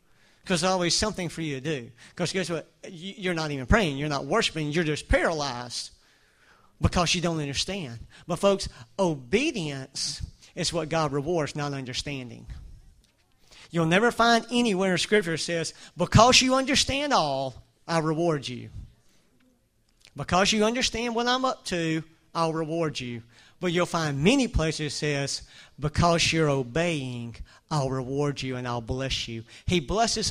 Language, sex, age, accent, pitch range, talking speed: English, male, 40-59, American, 150-190 Hz, 150 wpm